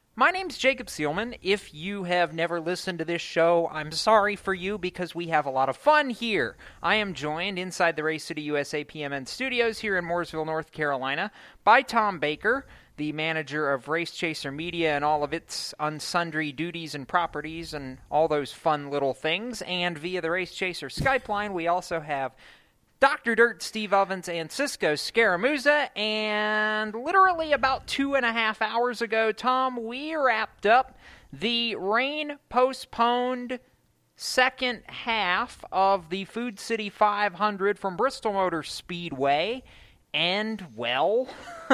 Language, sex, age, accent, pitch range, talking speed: English, male, 30-49, American, 160-235 Hz, 155 wpm